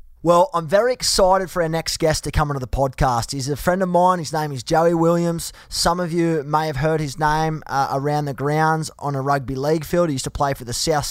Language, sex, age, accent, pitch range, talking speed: English, male, 20-39, Australian, 140-165 Hz, 255 wpm